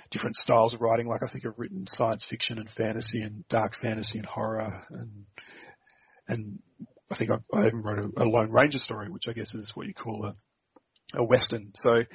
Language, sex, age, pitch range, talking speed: English, male, 40-59, 110-120 Hz, 205 wpm